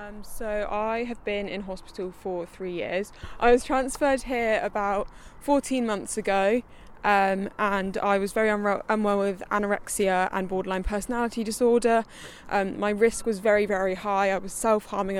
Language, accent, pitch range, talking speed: English, British, 195-220 Hz, 160 wpm